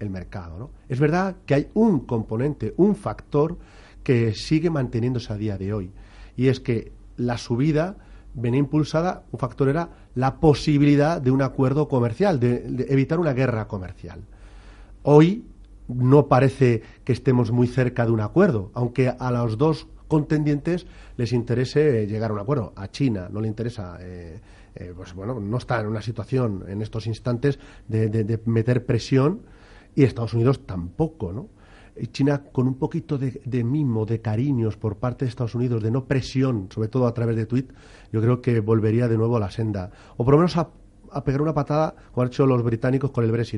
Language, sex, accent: Spanish, male, Spanish